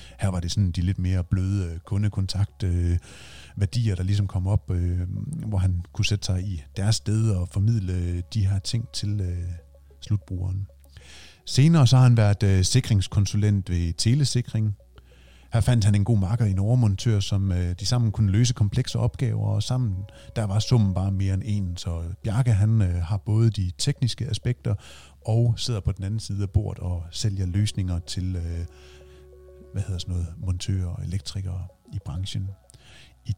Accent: native